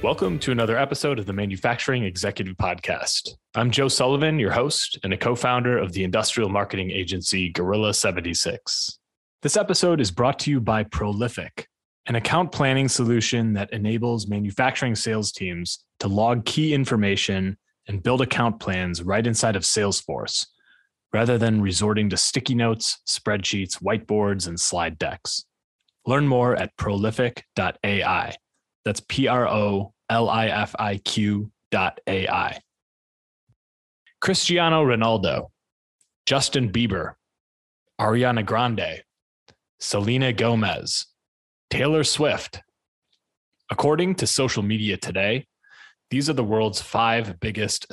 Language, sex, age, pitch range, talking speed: English, male, 20-39, 100-125 Hz, 115 wpm